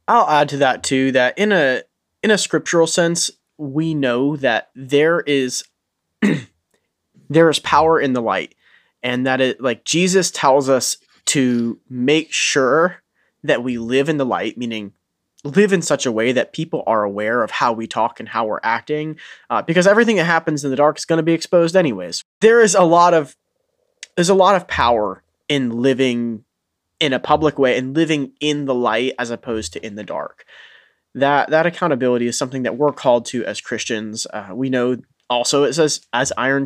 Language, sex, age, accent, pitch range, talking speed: English, male, 20-39, American, 120-155 Hz, 190 wpm